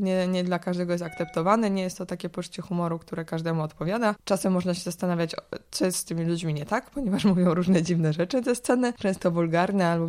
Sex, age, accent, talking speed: female, 20-39, native, 215 wpm